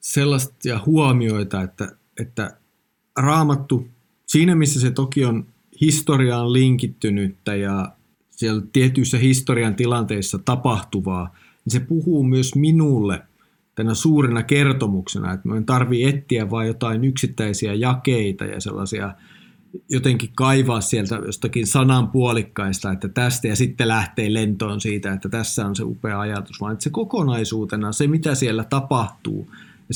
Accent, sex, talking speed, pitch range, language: native, male, 125 wpm, 105-140 Hz, Finnish